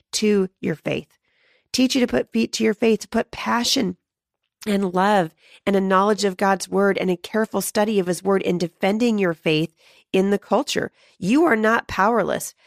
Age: 40-59